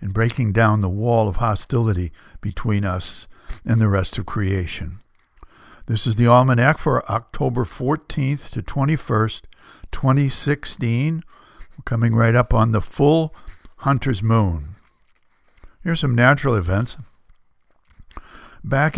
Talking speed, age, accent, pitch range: 115 wpm, 60-79, American, 105-135 Hz